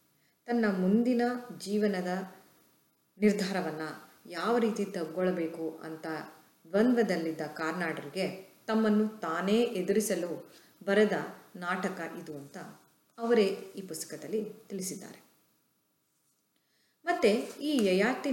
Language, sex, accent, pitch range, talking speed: Kannada, female, native, 180-230 Hz, 80 wpm